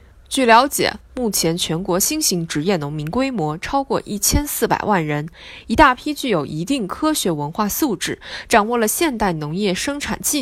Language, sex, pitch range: Chinese, female, 165-275 Hz